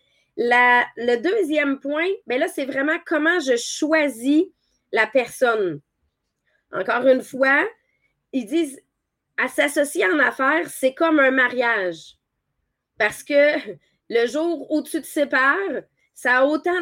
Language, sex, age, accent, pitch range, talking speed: English, female, 30-49, Canadian, 240-315 Hz, 130 wpm